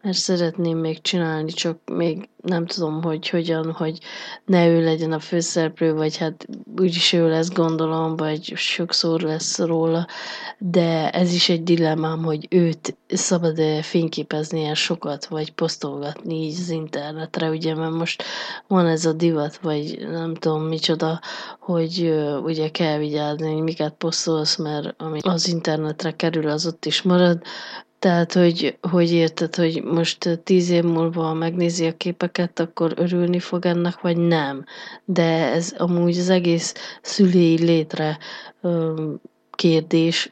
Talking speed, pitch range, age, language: 140 wpm, 160-175 Hz, 20-39, Hungarian